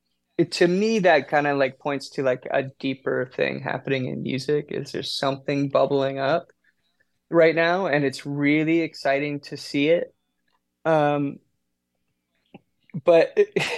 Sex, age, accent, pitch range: male, 20-39, American, 130-160 Hz